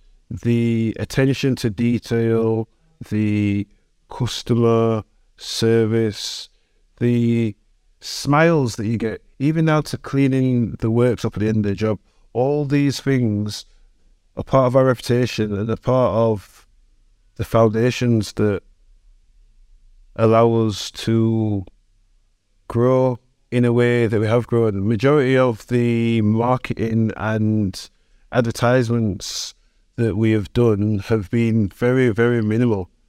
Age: 50-69